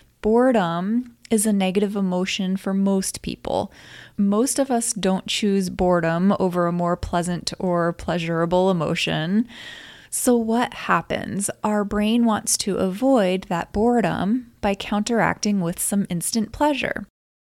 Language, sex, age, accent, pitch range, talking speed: English, female, 20-39, American, 185-230 Hz, 125 wpm